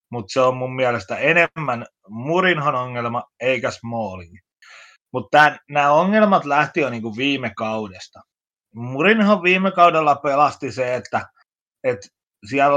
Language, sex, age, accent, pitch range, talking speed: Finnish, male, 30-49, native, 120-170 Hz, 120 wpm